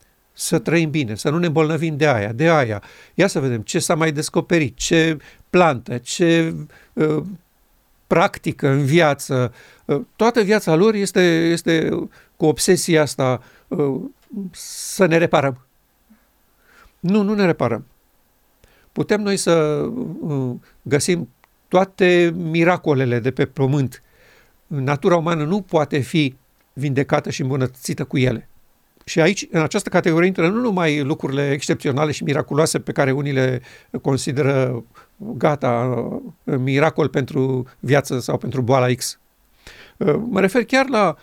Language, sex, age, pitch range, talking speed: Romanian, male, 50-69, 140-185 Hz, 130 wpm